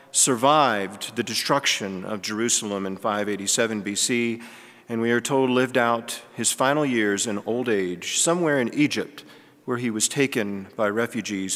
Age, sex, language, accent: 40-59, male, English, American